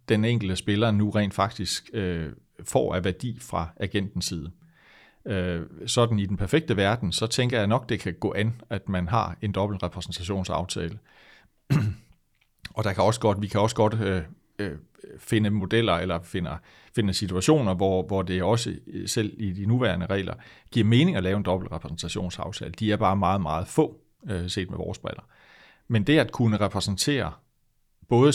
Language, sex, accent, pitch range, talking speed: Danish, male, native, 90-115 Hz, 170 wpm